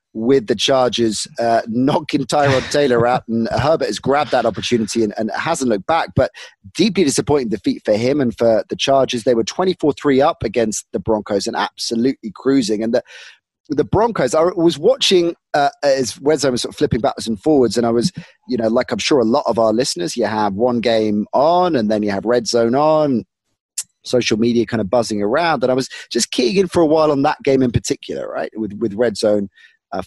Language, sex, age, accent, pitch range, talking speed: English, male, 30-49, British, 115-155 Hz, 215 wpm